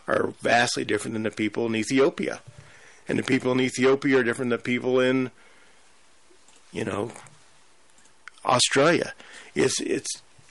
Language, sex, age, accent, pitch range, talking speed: English, male, 40-59, American, 105-130 Hz, 135 wpm